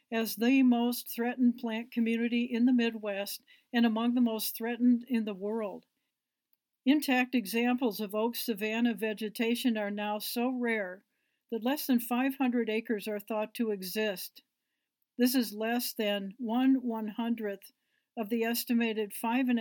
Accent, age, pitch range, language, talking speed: American, 60-79, 215-250 Hz, English, 145 wpm